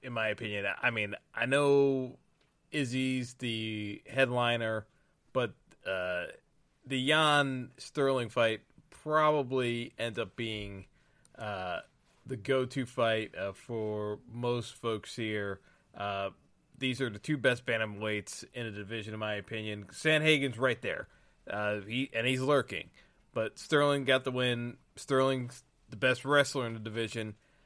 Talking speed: 135 wpm